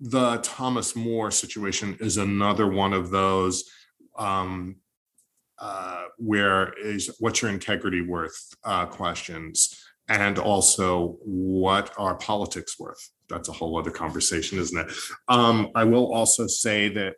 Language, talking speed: English, 135 wpm